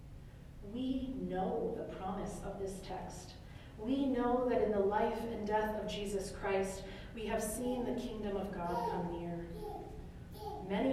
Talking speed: 155 wpm